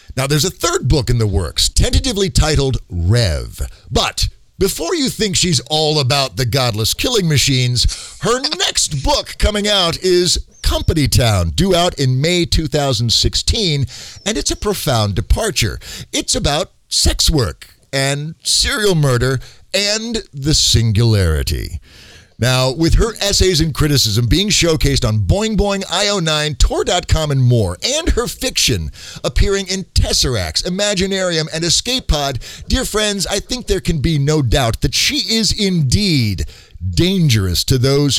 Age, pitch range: 50-69, 115-190 Hz